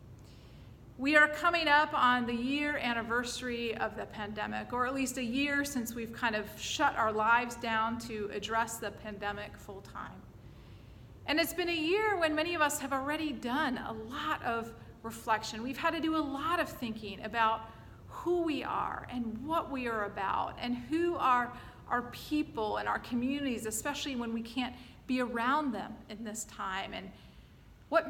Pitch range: 225-295 Hz